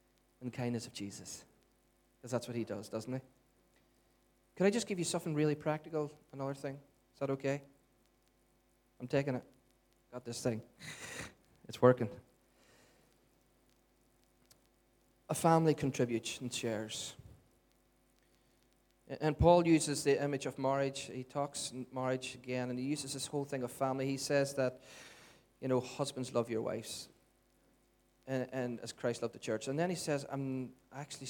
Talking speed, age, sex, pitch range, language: 150 wpm, 30-49, male, 120-140 Hz, English